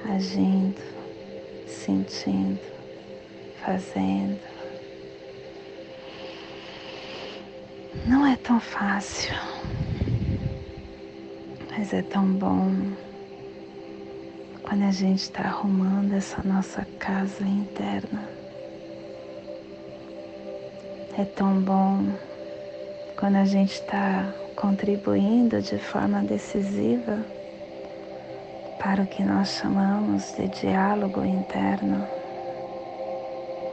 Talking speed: 70 wpm